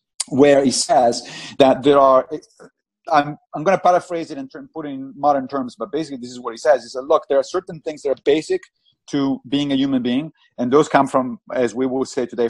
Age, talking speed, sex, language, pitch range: 30-49, 240 wpm, male, English, 125-170 Hz